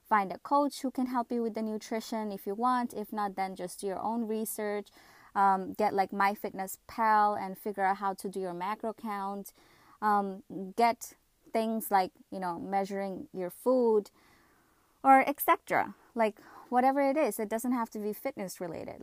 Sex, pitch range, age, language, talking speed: female, 195-240 Hz, 20-39, English, 175 wpm